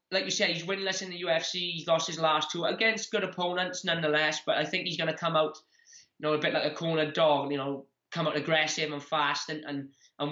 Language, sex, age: English, male, 20-39